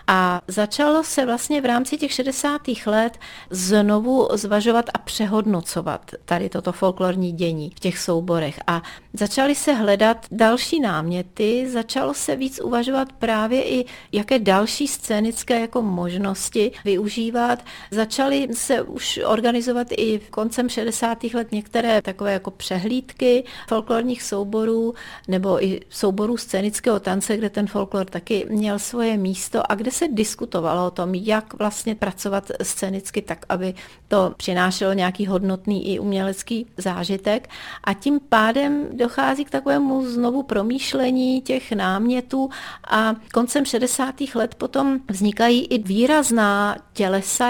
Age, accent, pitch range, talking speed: 40-59, native, 195-245 Hz, 130 wpm